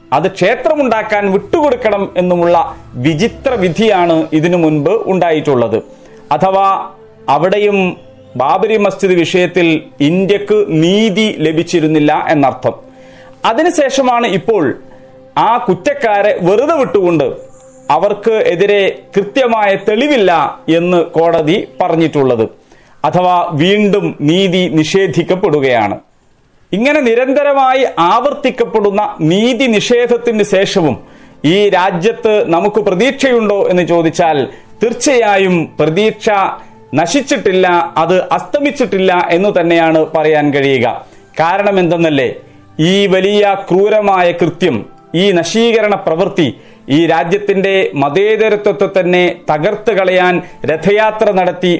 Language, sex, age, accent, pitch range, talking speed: Malayalam, male, 40-59, native, 165-215 Hz, 85 wpm